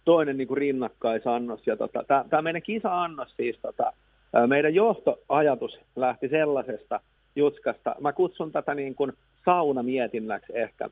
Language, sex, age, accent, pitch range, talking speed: Finnish, male, 50-69, native, 120-160 Hz, 120 wpm